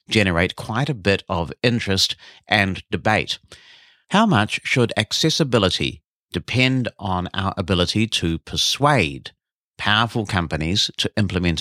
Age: 50-69